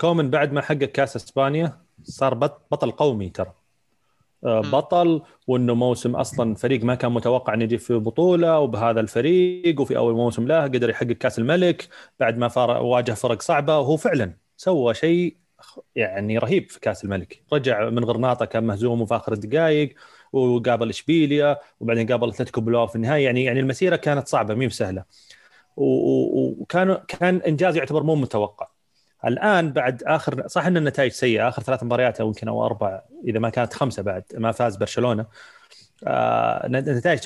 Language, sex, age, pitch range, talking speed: Arabic, male, 30-49, 115-150 Hz, 160 wpm